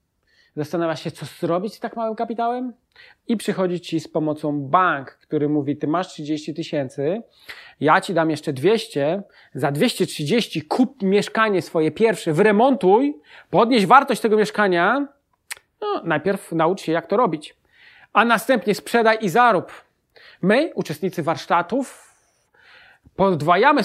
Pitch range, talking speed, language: 160-220 Hz, 130 wpm, Polish